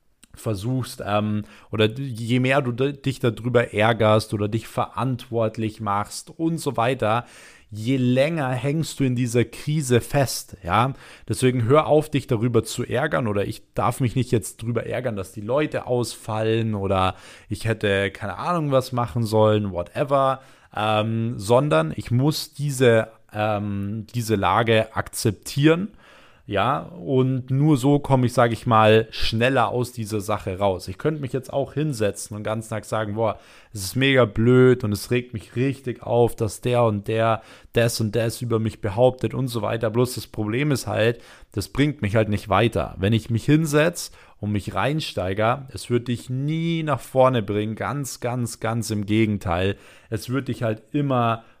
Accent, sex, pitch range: German, male, 105-130 Hz